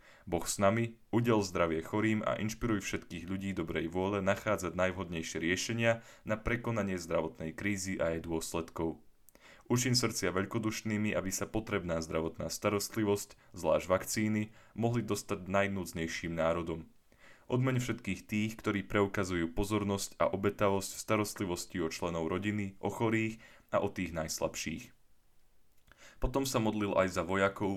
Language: Slovak